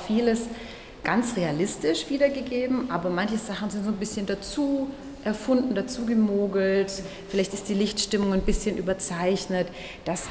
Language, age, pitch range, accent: German, 30-49, 180-220 Hz, German